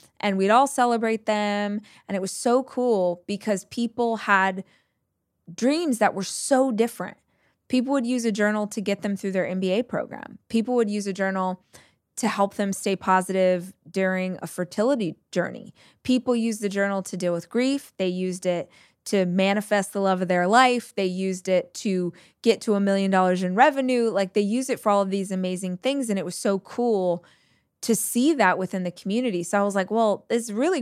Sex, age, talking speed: female, 20-39, 195 wpm